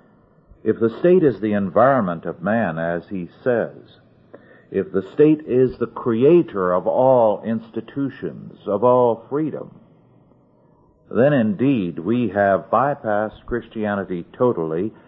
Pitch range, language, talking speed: 90-115 Hz, English, 120 wpm